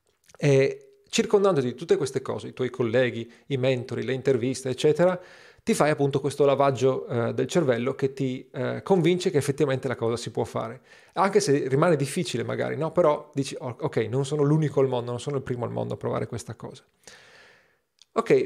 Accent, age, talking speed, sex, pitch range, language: native, 40-59, 190 wpm, male, 130-160 Hz, Italian